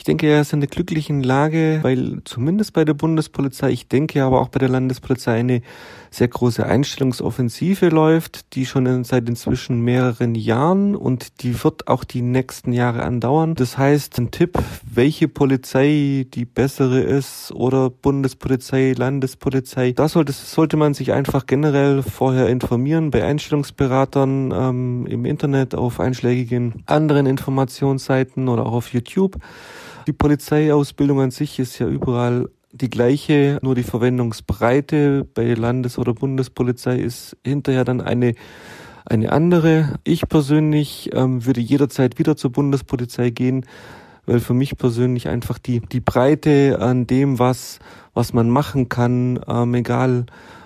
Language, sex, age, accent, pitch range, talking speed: German, male, 30-49, German, 125-145 Hz, 145 wpm